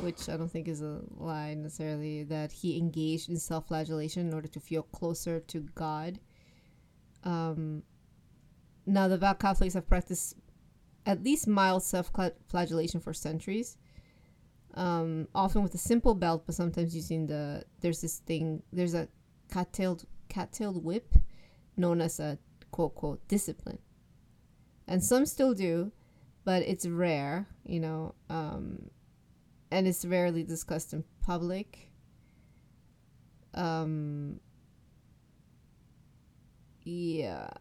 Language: English